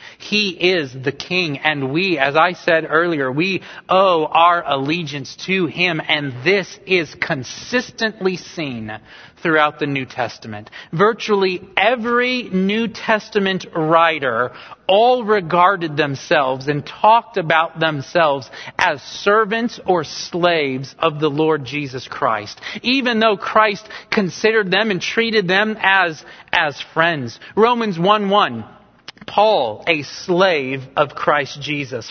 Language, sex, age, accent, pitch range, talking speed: English, male, 40-59, American, 155-210 Hz, 125 wpm